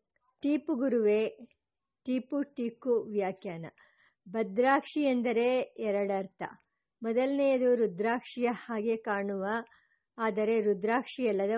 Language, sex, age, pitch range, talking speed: English, male, 50-69, 215-265 Hz, 80 wpm